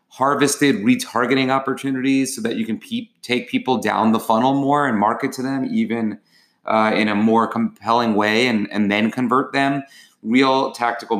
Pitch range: 110-130 Hz